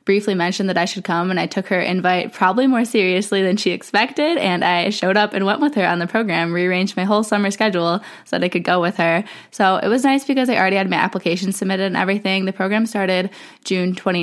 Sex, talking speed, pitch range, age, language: female, 240 wpm, 180-215 Hz, 10-29, English